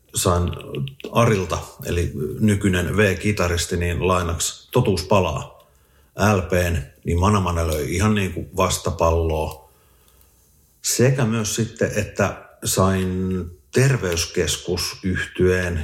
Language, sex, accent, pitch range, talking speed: Finnish, male, native, 80-105 Hz, 85 wpm